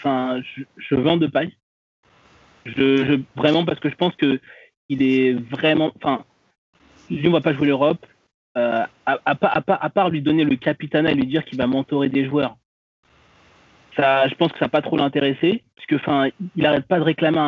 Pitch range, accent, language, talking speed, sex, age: 135-165 Hz, French, French, 205 wpm, male, 20-39